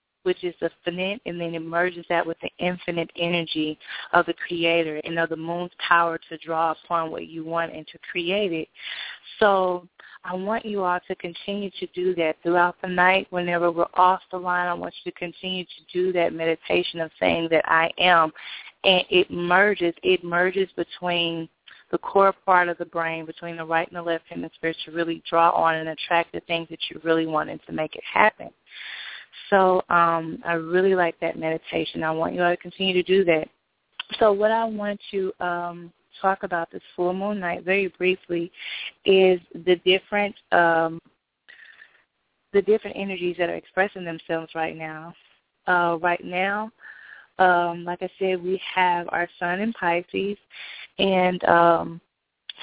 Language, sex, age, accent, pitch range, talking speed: English, female, 30-49, American, 170-190 Hz, 180 wpm